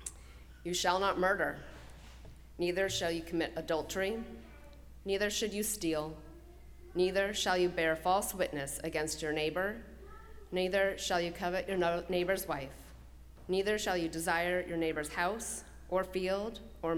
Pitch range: 145-190 Hz